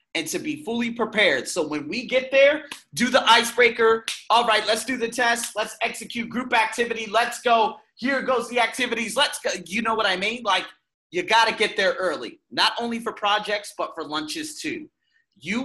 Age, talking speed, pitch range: 30-49, 200 wpm, 180-265 Hz